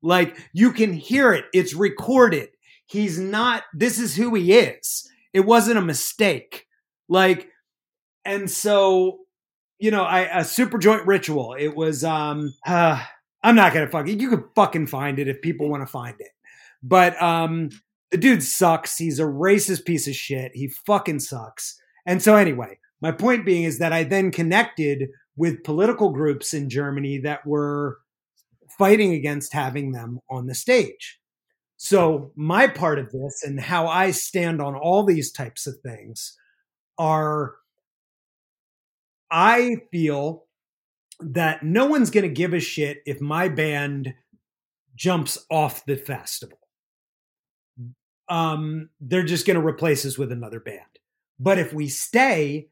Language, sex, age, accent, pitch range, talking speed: English, male, 30-49, American, 145-195 Hz, 150 wpm